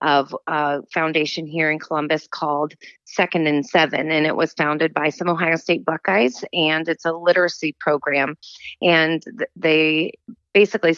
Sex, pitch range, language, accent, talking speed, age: female, 155-180 Hz, English, American, 150 wpm, 30-49